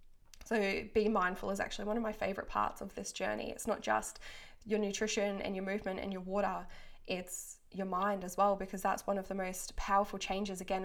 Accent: Australian